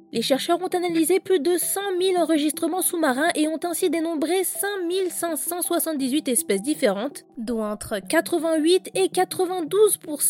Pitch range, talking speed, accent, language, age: 250-355 Hz, 120 wpm, French, French, 20-39